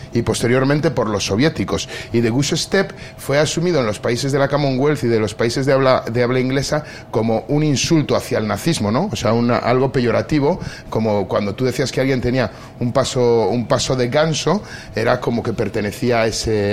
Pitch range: 105-130 Hz